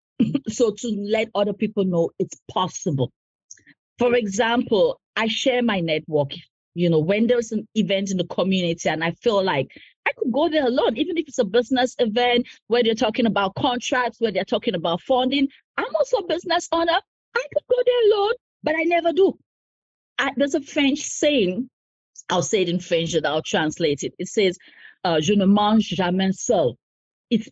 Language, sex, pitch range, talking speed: English, female, 195-275 Hz, 185 wpm